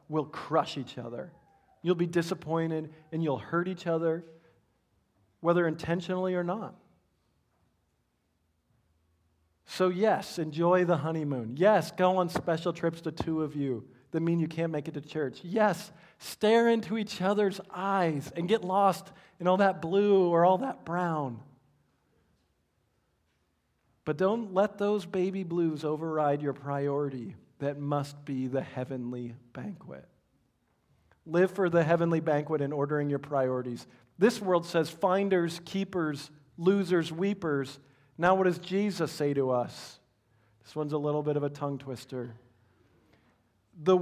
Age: 40-59